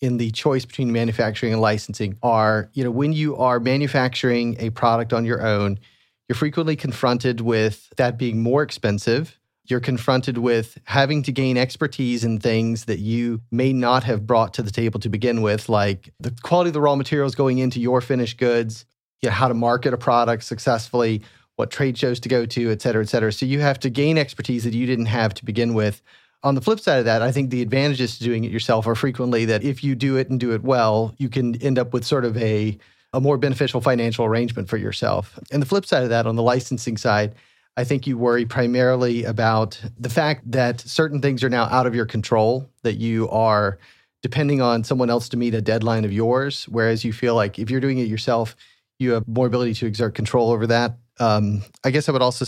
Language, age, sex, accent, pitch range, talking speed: English, 30-49, male, American, 115-130 Hz, 220 wpm